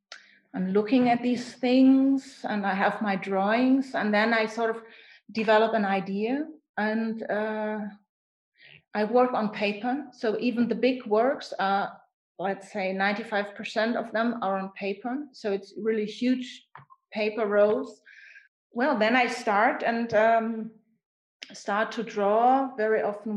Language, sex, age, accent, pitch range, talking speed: English, female, 30-49, German, 210-250 Hz, 145 wpm